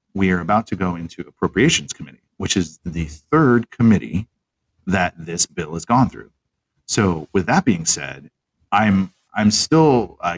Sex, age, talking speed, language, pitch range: male, 30-49, 160 wpm, English, 85-100 Hz